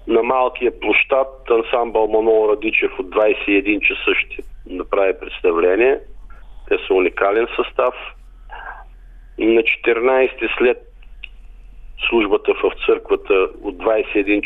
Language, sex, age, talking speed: Bulgarian, male, 50-69, 100 wpm